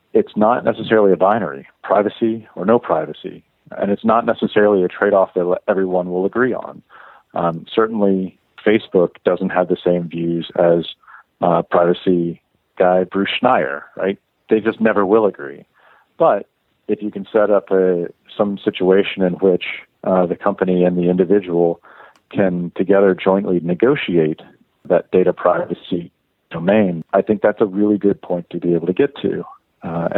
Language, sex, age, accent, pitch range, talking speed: English, male, 40-59, American, 90-100 Hz, 155 wpm